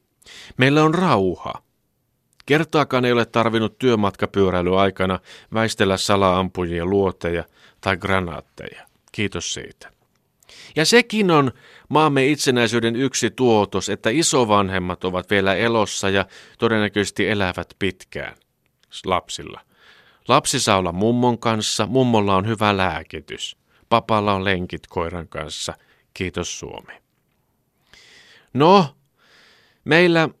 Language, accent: Finnish, native